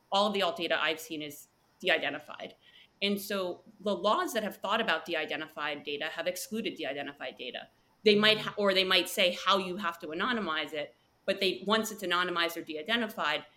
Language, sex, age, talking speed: English, female, 30-49, 180 wpm